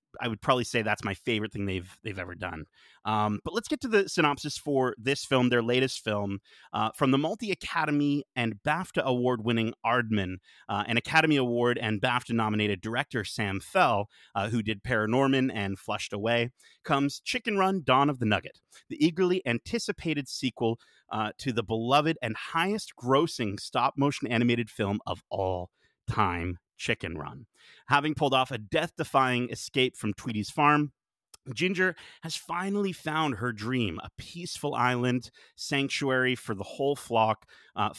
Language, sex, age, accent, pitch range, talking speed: English, male, 30-49, American, 110-145 Hz, 155 wpm